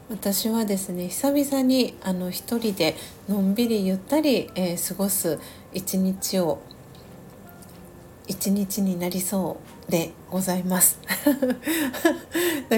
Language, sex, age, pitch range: Japanese, female, 40-59, 170-205 Hz